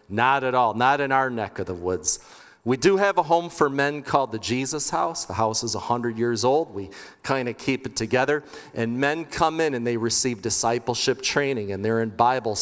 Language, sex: English, male